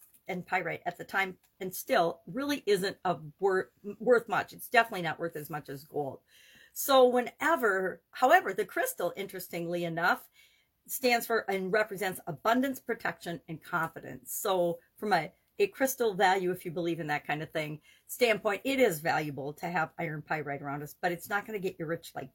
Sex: female